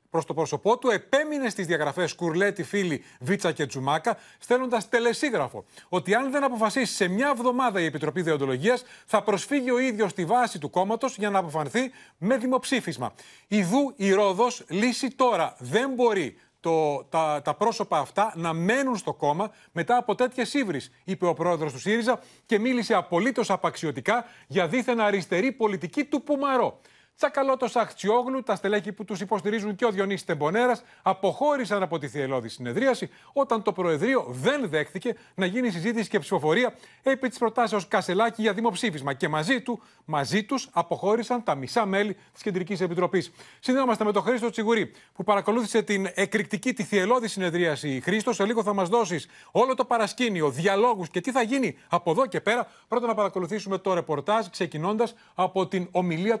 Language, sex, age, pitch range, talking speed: Greek, male, 30-49, 175-240 Hz, 165 wpm